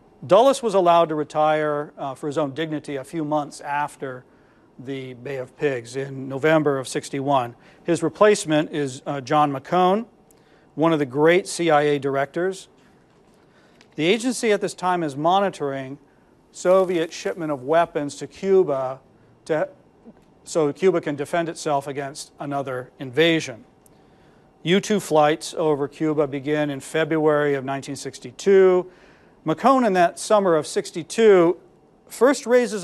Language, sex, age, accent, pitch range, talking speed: English, male, 40-59, American, 145-175 Hz, 130 wpm